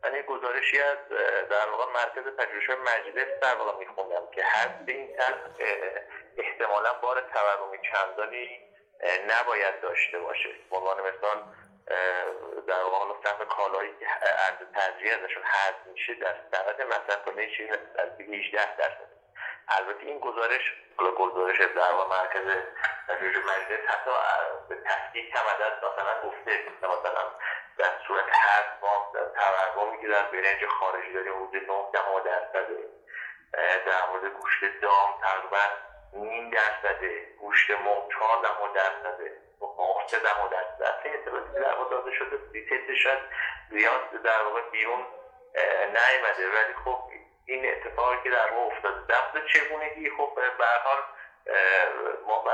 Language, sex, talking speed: Persian, male, 130 wpm